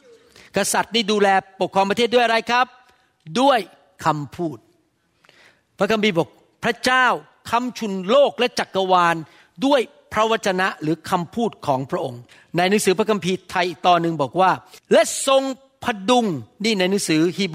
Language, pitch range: Thai, 175-235 Hz